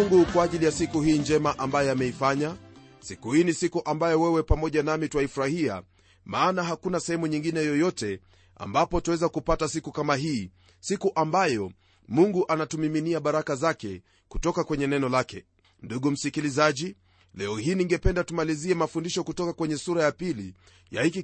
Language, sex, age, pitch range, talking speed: Swahili, male, 40-59, 120-175 Hz, 150 wpm